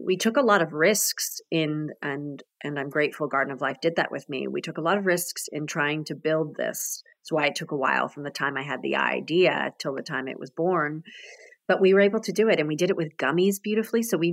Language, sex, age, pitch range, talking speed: English, female, 30-49, 160-225 Hz, 270 wpm